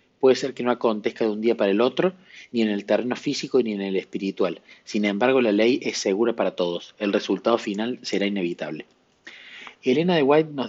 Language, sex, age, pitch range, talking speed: Spanish, male, 30-49, 105-130 Hz, 210 wpm